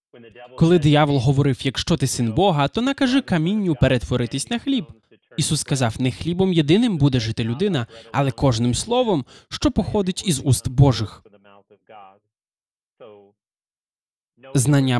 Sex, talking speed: male, 120 wpm